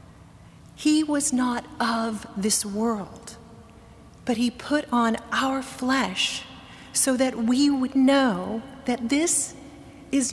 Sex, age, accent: female, 40-59, American